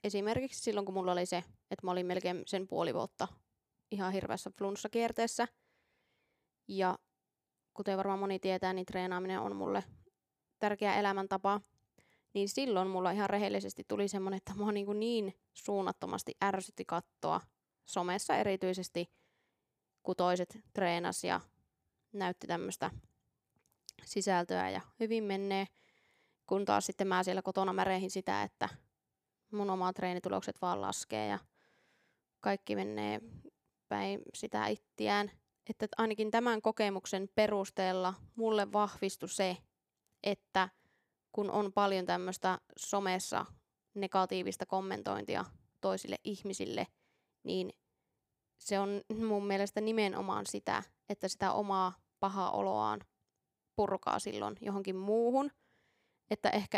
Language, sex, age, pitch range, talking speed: Finnish, female, 20-39, 180-205 Hz, 115 wpm